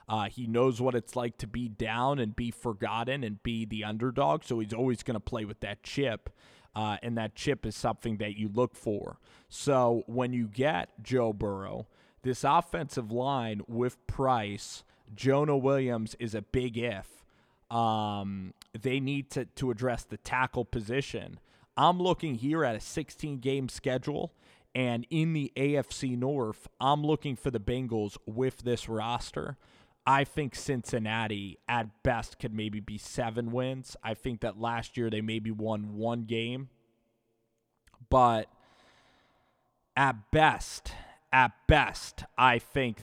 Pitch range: 110-130 Hz